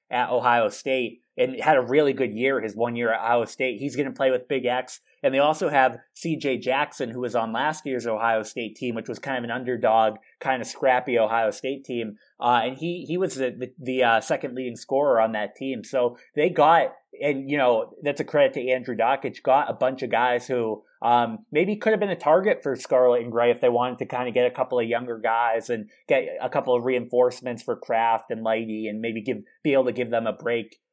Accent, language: American, English